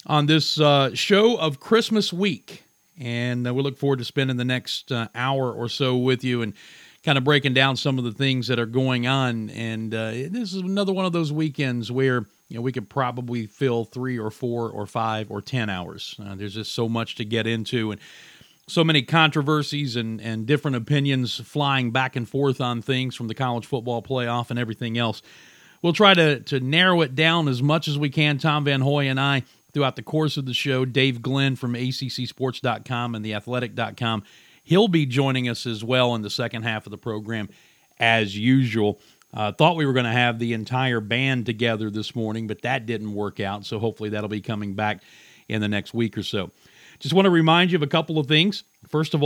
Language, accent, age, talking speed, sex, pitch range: English, American, 40-59, 215 wpm, male, 115-145 Hz